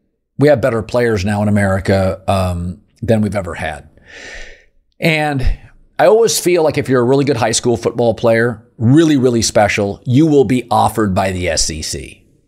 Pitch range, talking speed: 110-140 Hz, 175 wpm